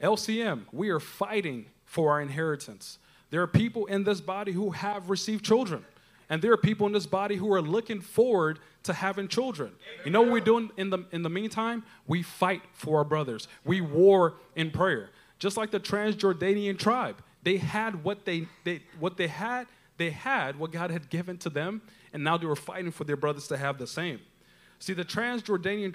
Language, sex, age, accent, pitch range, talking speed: English, male, 30-49, American, 155-200 Hz, 200 wpm